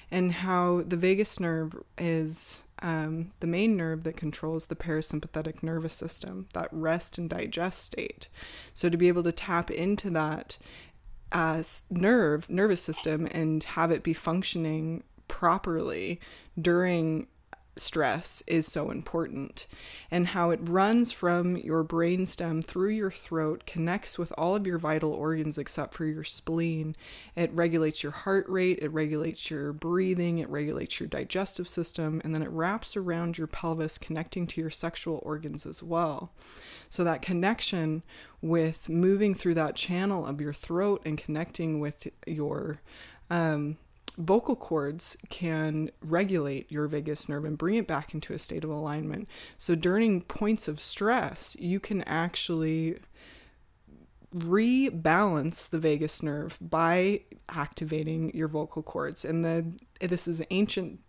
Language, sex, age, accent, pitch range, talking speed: English, female, 20-39, American, 155-180 Hz, 145 wpm